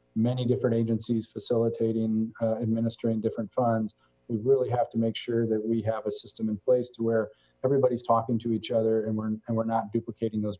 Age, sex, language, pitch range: 40-59, male, English, 110-120 Hz